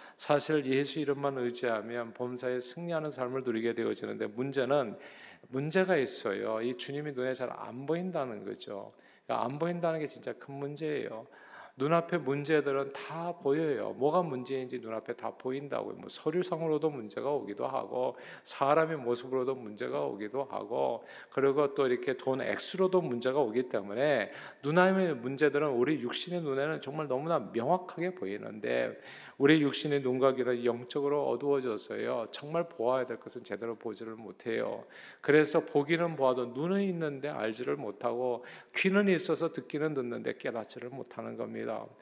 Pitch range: 125-160 Hz